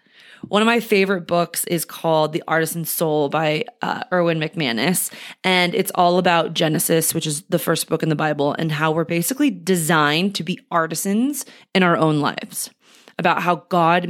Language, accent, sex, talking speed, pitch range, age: English, American, female, 180 wpm, 160-190 Hz, 20-39